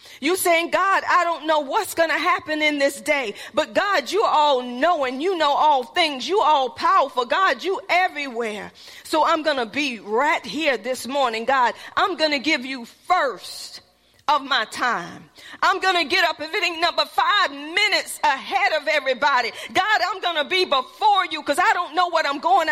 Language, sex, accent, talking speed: English, female, American, 195 wpm